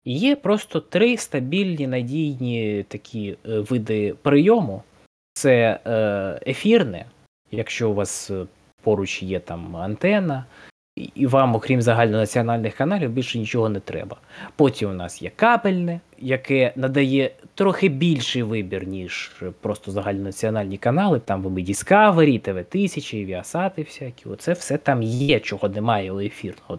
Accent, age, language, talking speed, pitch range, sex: native, 20-39, Ukrainian, 120 wpm, 105-140 Hz, male